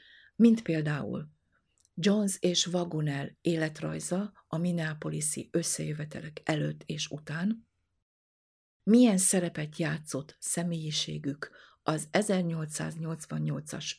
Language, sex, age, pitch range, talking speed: Hungarian, female, 50-69, 150-180 Hz, 75 wpm